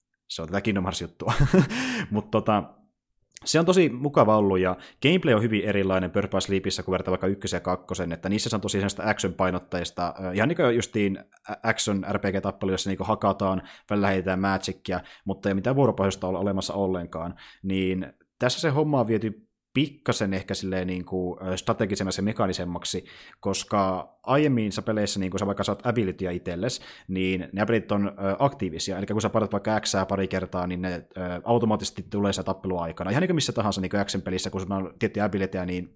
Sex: male